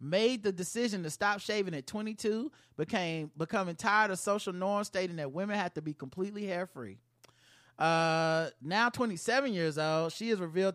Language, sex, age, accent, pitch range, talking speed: English, male, 30-49, American, 160-200 Hz, 165 wpm